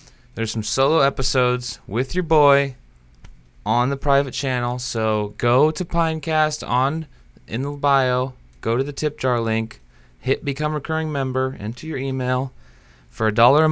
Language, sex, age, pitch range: English, male, 20-39, 95-135 Hz